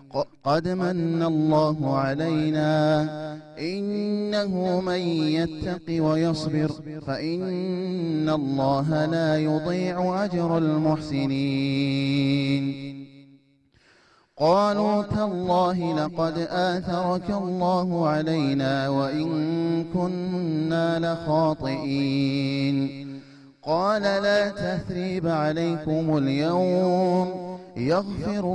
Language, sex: Amharic, male